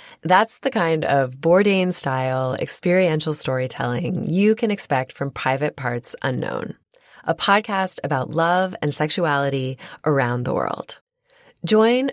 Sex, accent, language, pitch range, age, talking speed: female, American, English, 145-185 Hz, 20-39, 120 wpm